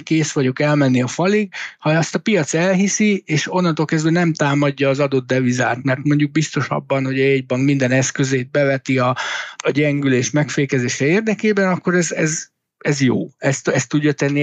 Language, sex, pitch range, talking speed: Hungarian, male, 135-170 Hz, 170 wpm